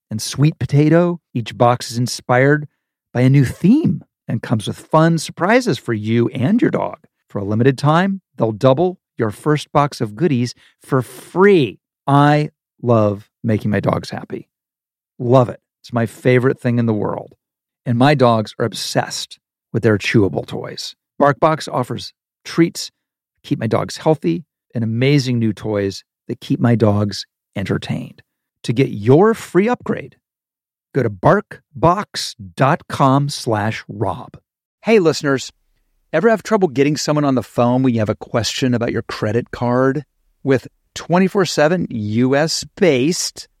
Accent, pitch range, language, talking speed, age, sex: American, 110-150 Hz, English, 145 wpm, 40-59, male